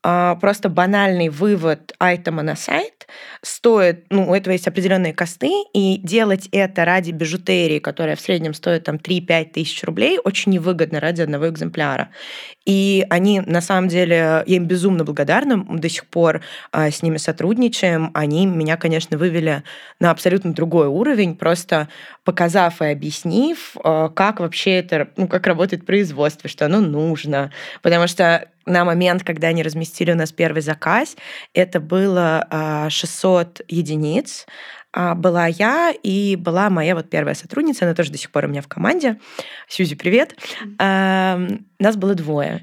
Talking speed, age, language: 145 wpm, 20-39, Russian